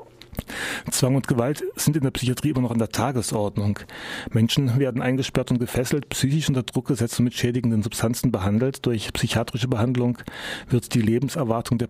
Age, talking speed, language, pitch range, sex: 30-49, 165 wpm, German, 110-125 Hz, male